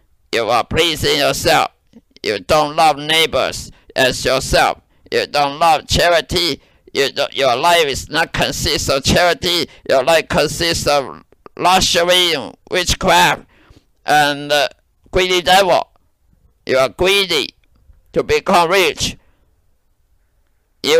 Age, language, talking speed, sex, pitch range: 50-69, English, 110 wpm, male, 150-185 Hz